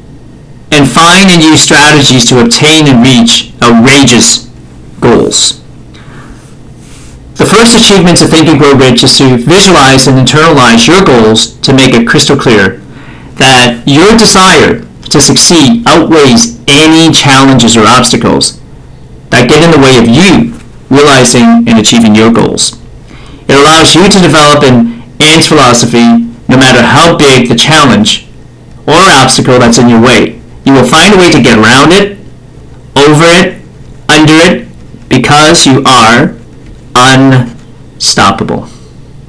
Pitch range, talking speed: 120-155 Hz, 135 wpm